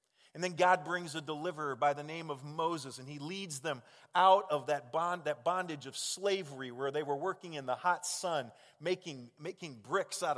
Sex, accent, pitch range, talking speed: male, American, 140-195 Hz, 200 wpm